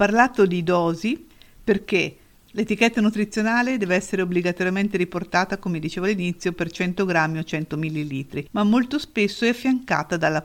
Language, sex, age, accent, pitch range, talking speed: Italian, female, 50-69, native, 160-200 Hz, 145 wpm